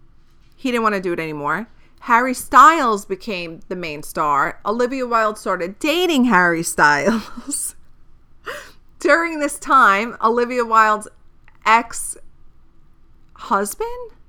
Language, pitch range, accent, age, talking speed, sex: English, 175-235 Hz, American, 30-49, 105 wpm, female